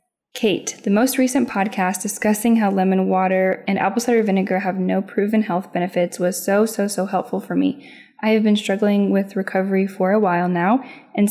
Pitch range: 185-235 Hz